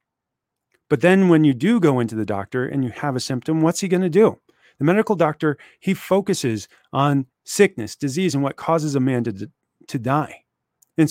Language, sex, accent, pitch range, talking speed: English, male, American, 140-175 Hz, 195 wpm